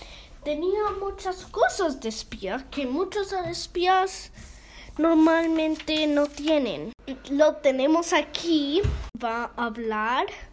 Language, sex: English, female